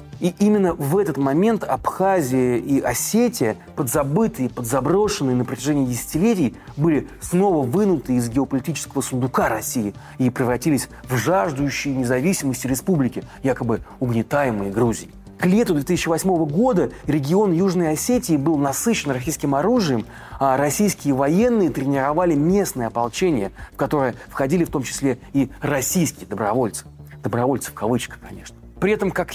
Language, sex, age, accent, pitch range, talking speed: Russian, male, 30-49, native, 130-180 Hz, 125 wpm